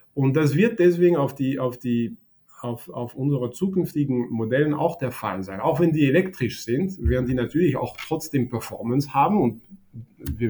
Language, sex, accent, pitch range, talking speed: German, male, German, 120-155 Hz, 175 wpm